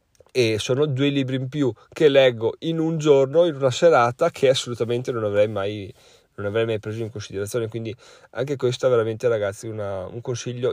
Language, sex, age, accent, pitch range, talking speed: Italian, male, 30-49, native, 115-145 Hz, 190 wpm